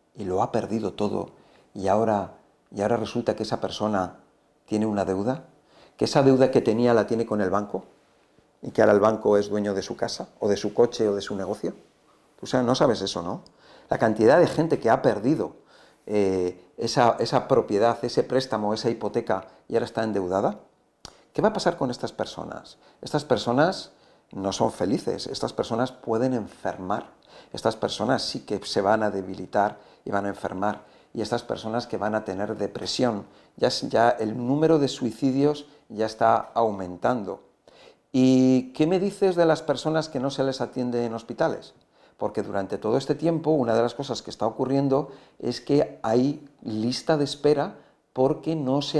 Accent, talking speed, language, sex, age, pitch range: Spanish, 180 wpm, Spanish, male, 50-69, 105-135 Hz